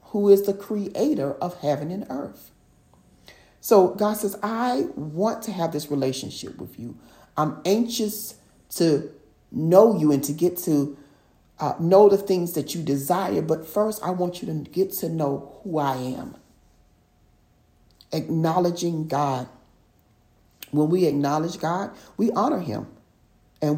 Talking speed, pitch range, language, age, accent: 145 wpm, 135-175 Hz, English, 40-59, American